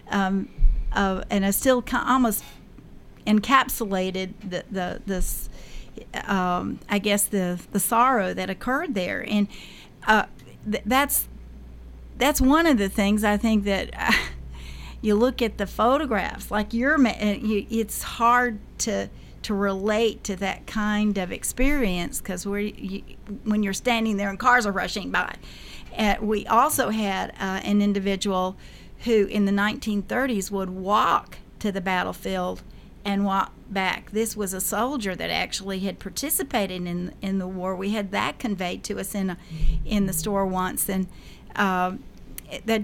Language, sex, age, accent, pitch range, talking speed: English, female, 50-69, American, 190-225 Hz, 150 wpm